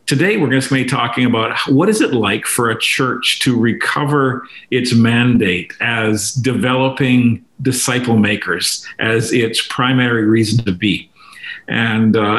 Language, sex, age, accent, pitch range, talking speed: English, male, 50-69, American, 115-135 Hz, 145 wpm